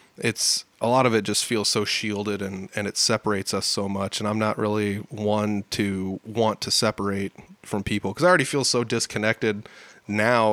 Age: 20-39